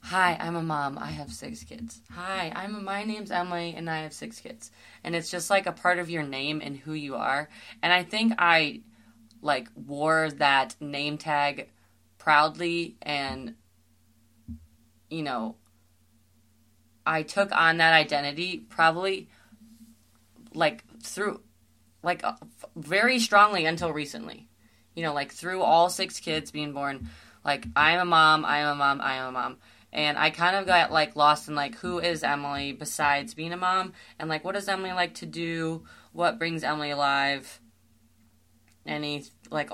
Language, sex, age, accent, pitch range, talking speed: English, female, 20-39, American, 135-175 Hz, 170 wpm